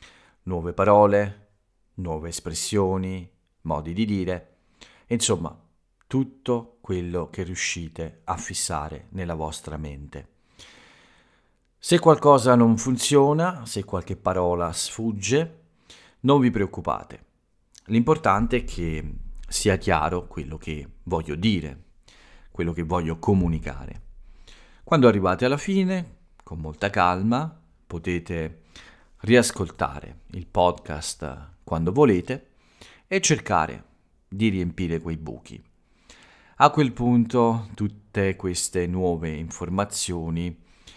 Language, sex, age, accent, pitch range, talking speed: Italian, male, 40-59, native, 80-110 Hz, 100 wpm